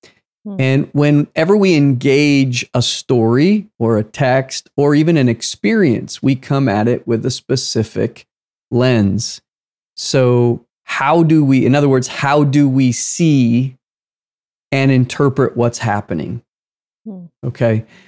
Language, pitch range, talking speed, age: English, 115-135 Hz, 125 wpm, 40-59